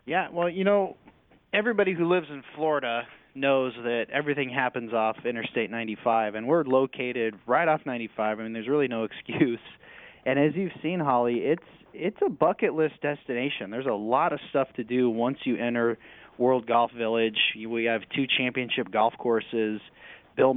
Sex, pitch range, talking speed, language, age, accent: male, 115-135 Hz, 170 wpm, English, 30-49, American